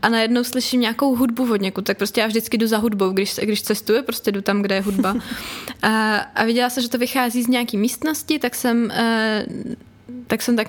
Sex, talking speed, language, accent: female, 220 wpm, Czech, native